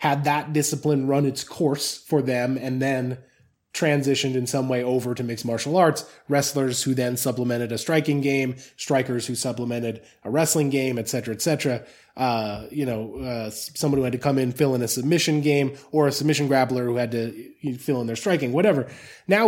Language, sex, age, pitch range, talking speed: English, male, 20-39, 130-160 Hz, 195 wpm